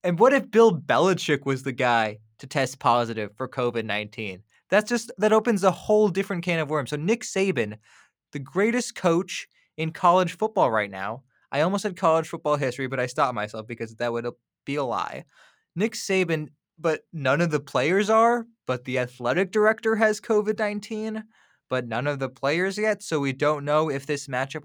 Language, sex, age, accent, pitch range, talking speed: English, male, 20-39, American, 125-175 Hz, 185 wpm